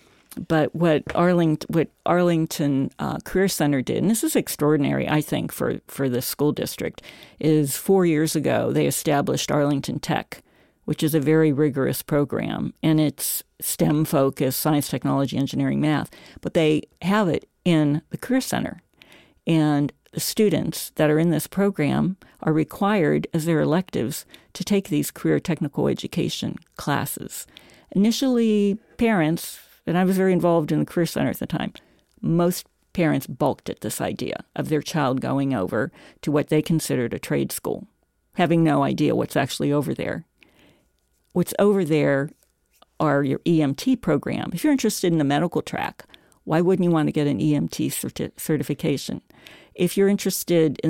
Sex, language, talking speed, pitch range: female, English, 160 wpm, 145-180 Hz